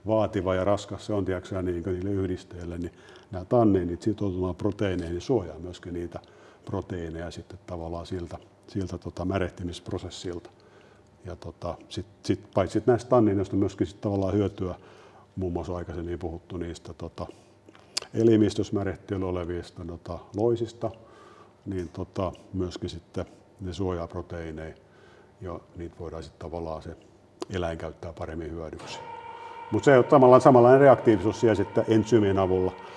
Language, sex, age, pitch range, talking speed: Finnish, male, 50-69, 90-110 Hz, 125 wpm